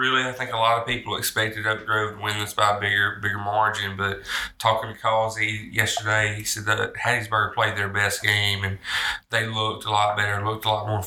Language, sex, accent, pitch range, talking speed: English, male, American, 105-120 Hz, 215 wpm